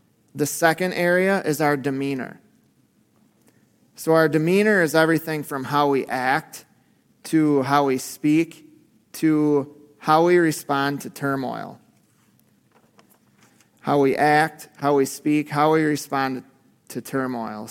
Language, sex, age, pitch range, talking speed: English, male, 30-49, 140-165 Hz, 120 wpm